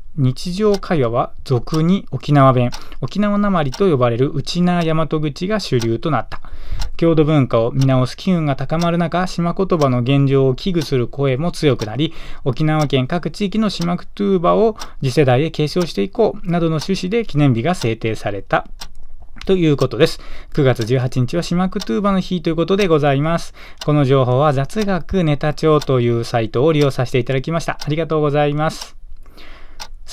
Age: 20-39